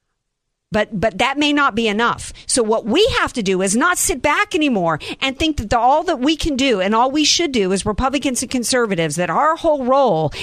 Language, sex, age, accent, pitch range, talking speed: English, female, 50-69, American, 195-270 Hz, 230 wpm